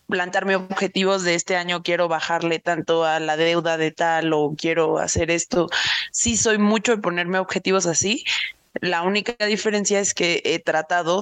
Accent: Mexican